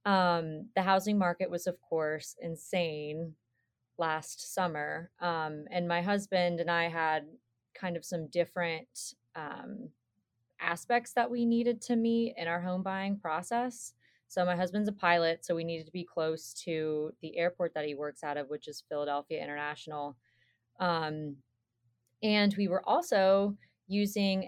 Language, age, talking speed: English, 20-39, 150 wpm